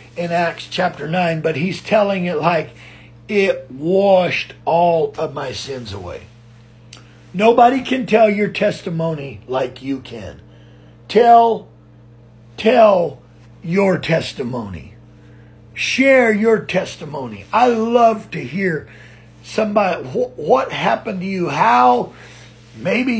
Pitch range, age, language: 135-215 Hz, 50-69, English